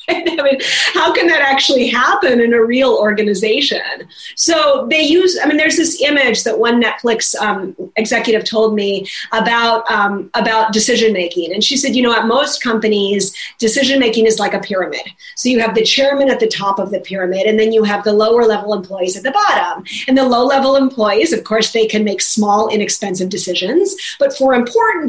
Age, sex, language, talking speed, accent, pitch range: 30-49, female, English, 200 wpm, American, 210-260 Hz